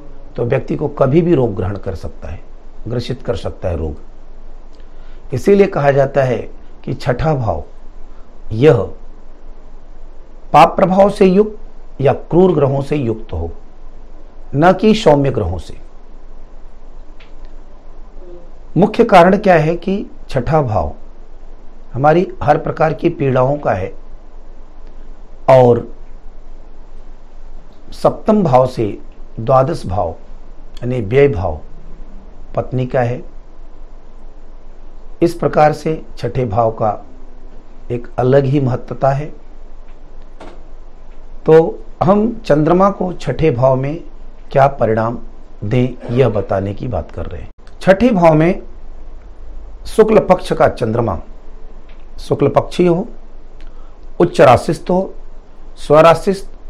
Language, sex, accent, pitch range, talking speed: Hindi, male, native, 110-165 Hz, 110 wpm